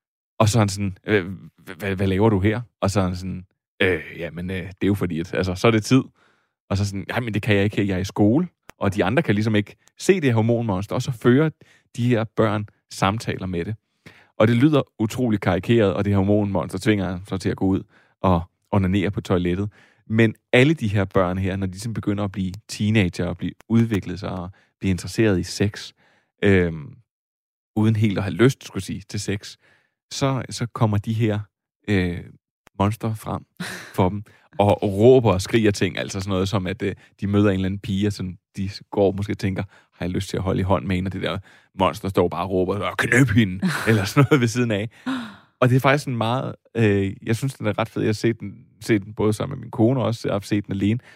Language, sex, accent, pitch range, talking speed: Danish, male, native, 95-115 Hz, 235 wpm